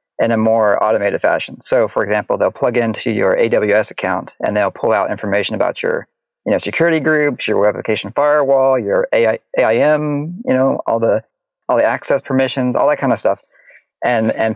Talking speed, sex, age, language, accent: 195 wpm, male, 40-59, English, American